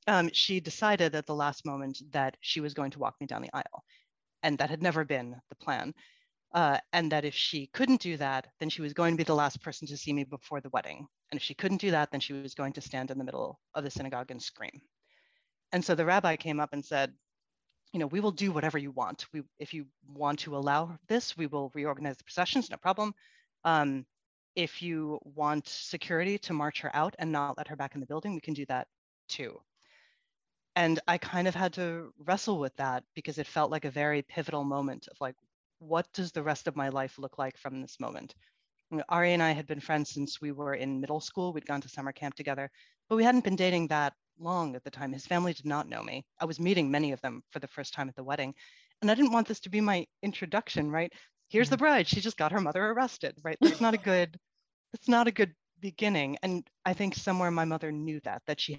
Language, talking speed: English, 235 wpm